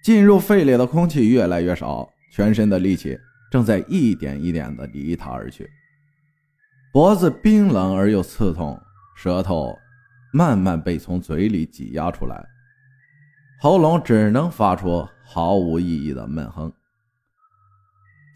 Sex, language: male, Chinese